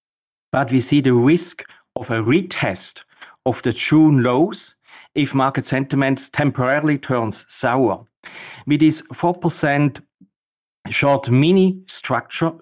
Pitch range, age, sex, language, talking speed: 120-150 Hz, 40-59, male, English, 115 wpm